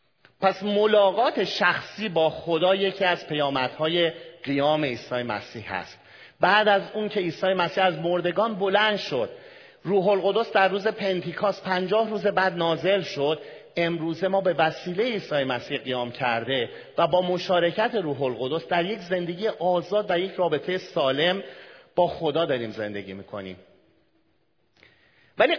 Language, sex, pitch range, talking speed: Persian, male, 140-200 Hz, 140 wpm